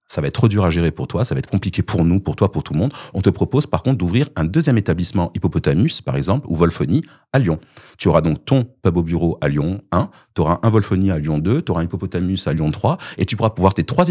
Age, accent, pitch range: 30-49, French, 80-110 Hz